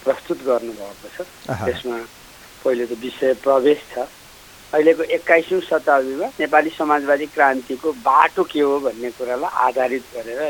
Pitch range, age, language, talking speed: 130-145 Hz, 60-79, English, 130 wpm